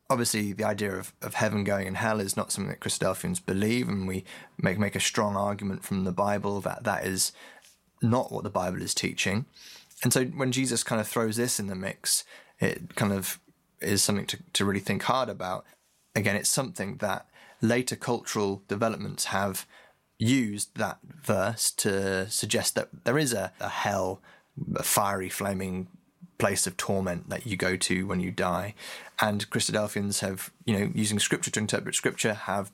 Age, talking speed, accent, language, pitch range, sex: 20-39, 180 wpm, British, English, 95-115 Hz, male